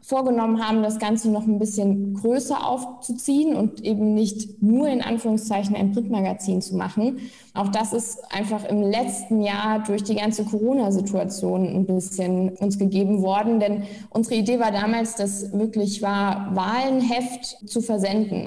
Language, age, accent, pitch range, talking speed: German, 20-39, German, 200-235 Hz, 150 wpm